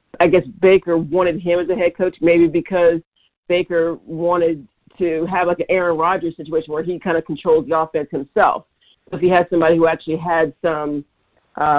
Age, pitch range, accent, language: 50-69, 160-185 Hz, American, English